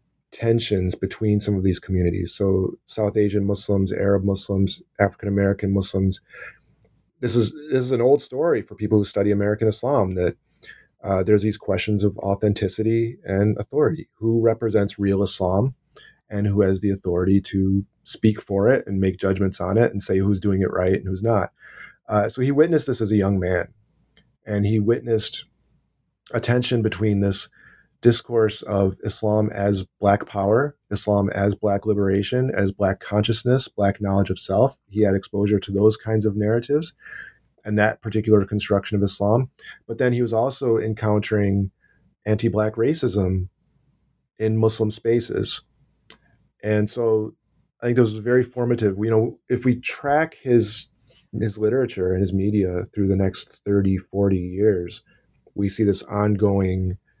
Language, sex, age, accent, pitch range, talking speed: English, male, 30-49, American, 100-110 Hz, 160 wpm